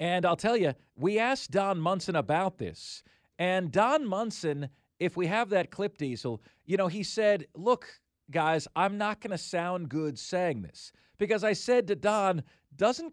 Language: English